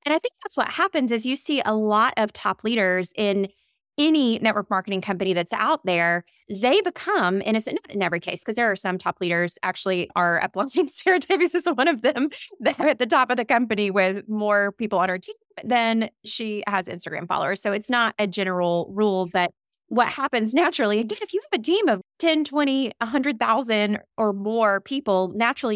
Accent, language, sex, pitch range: American, English, female, 185-240 Hz